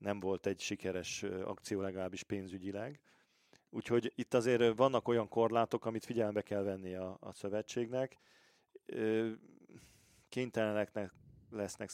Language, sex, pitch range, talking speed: Hungarian, male, 100-115 Hz, 110 wpm